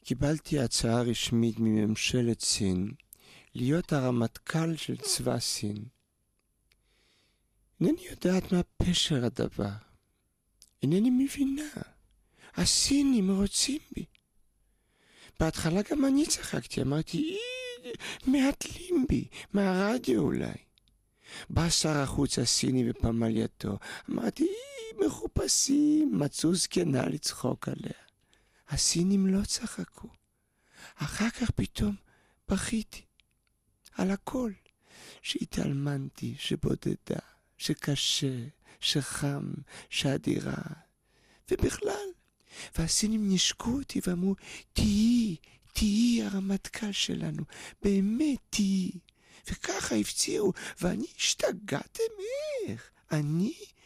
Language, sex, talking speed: English, male, 60 wpm